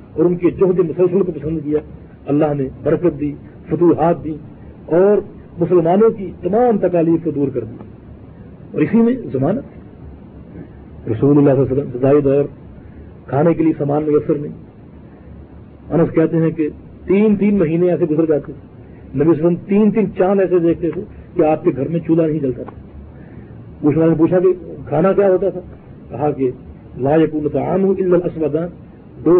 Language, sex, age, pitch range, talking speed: Urdu, male, 50-69, 135-180 Hz, 170 wpm